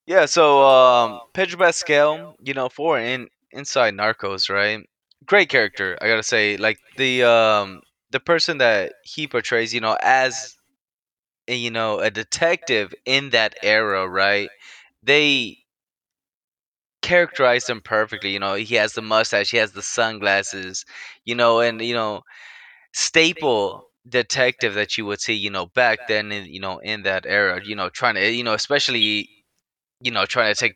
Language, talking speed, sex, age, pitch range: English, 160 wpm, male, 20-39, 100-125 Hz